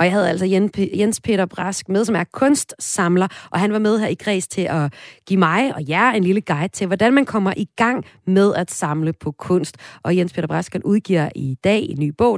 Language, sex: Danish, female